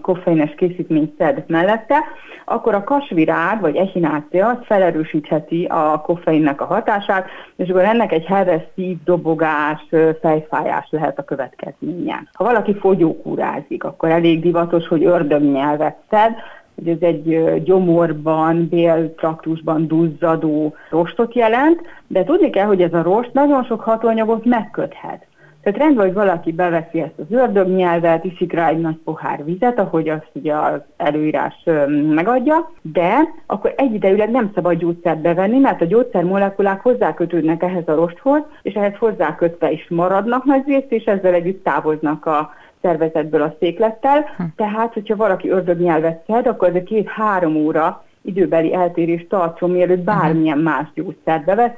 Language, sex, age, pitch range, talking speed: Hungarian, female, 30-49, 160-215 Hz, 140 wpm